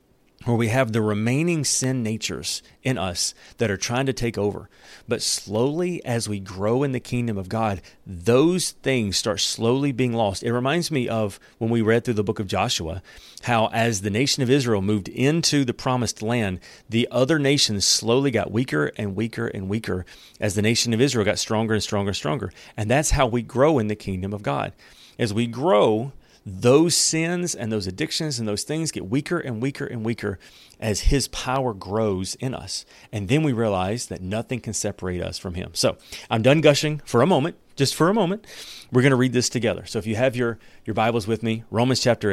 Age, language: 40-59, English